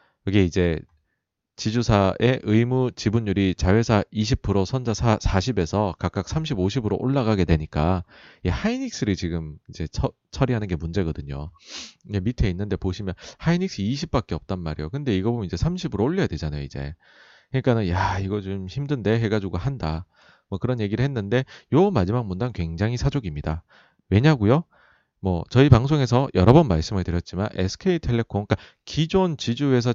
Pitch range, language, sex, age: 90-125 Hz, Korean, male, 40-59